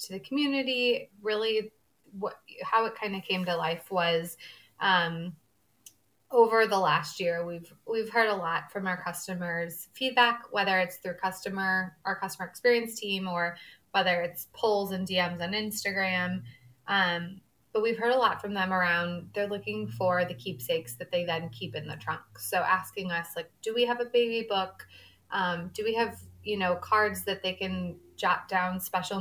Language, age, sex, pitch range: English, 20-39, female, 170-205 Hz